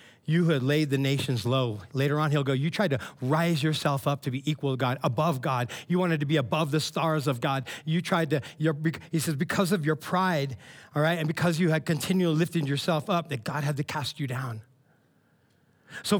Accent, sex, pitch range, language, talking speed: American, male, 150-200 Hz, English, 220 wpm